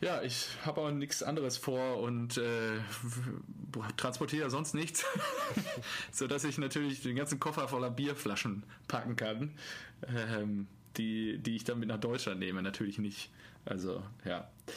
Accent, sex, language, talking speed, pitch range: German, male, German, 140 wpm, 120-145 Hz